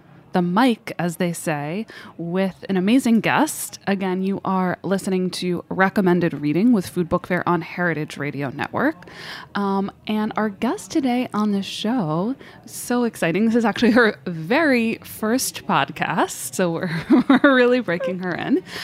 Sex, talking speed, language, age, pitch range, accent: female, 150 wpm, English, 20-39, 175-225 Hz, American